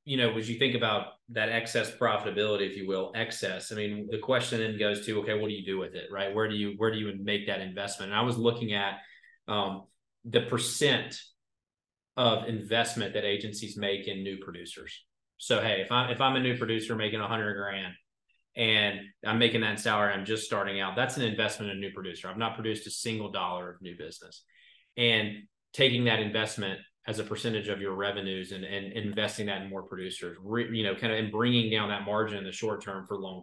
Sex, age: male, 30-49